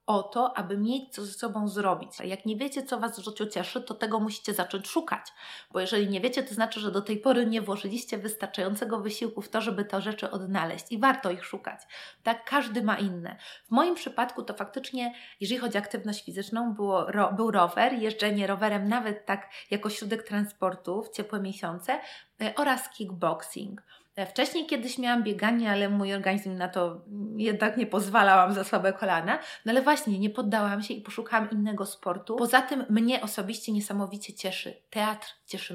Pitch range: 200-240 Hz